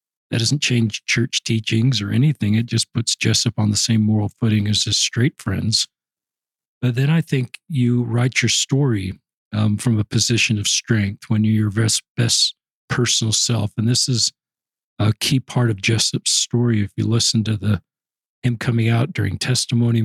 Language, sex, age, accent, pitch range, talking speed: English, male, 50-69, American, 110-120 Hz, 175 wpm